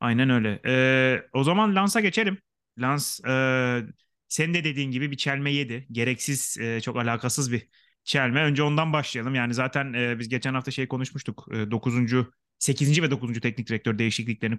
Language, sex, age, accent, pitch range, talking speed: Turkish, male, 30-49, native, 120-155 Hz, 165 wpm